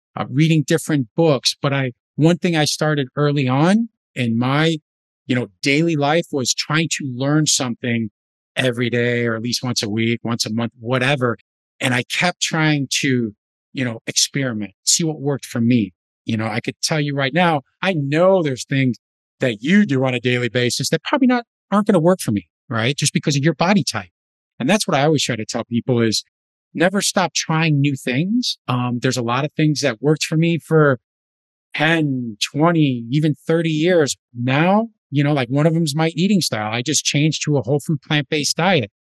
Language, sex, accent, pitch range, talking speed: English, male, American, 125-165 Hz, 205 wpm